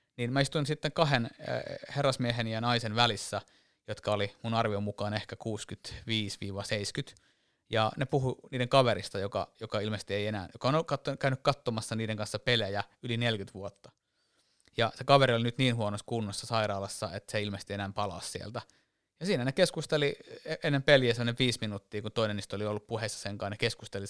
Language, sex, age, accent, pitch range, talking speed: Finnish, male, 30-49, native, 105-120 Hz, 180 wpm